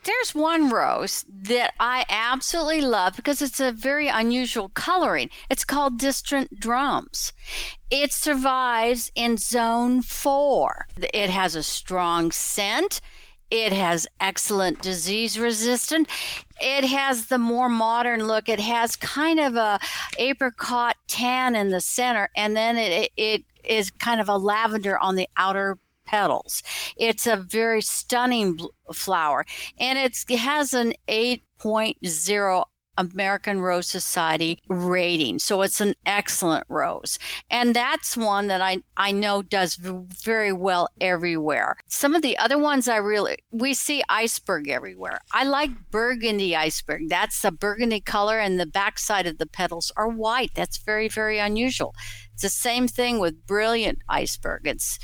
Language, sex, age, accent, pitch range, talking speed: English, female, 60-79, American, 195-255 Hz, 140 wpm